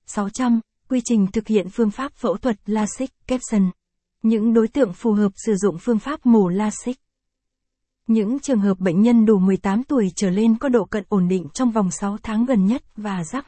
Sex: female